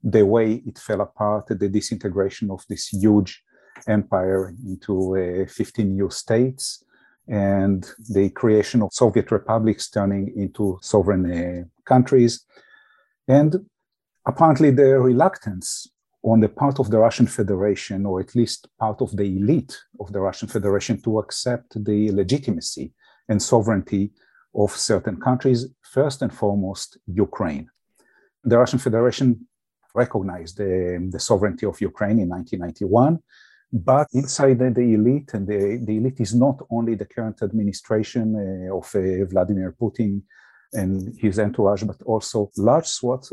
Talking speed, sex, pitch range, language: 135 wpm, male, 100-120 Hz, English